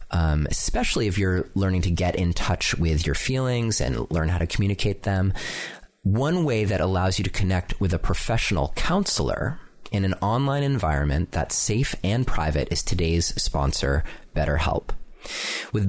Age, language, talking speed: 30-49, English, 160 wpm